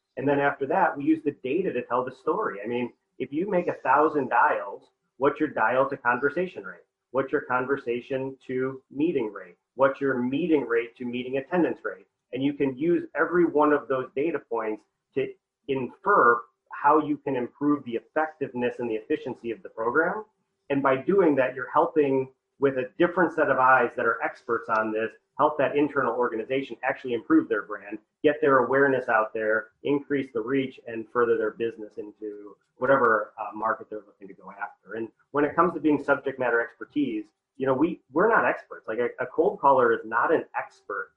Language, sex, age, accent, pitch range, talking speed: English, male, 30-49, American, 115-150 Hz, 195 wpm